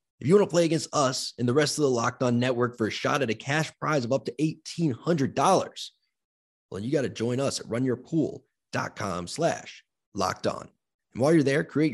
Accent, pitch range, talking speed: American, 125-160 Hz, 210 wpm